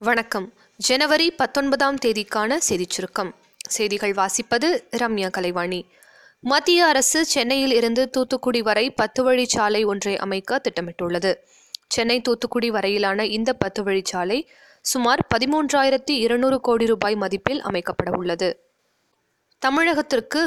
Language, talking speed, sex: Tamil, 105 wpm, female